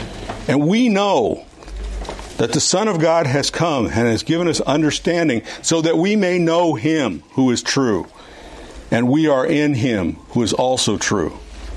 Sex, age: male, 50-69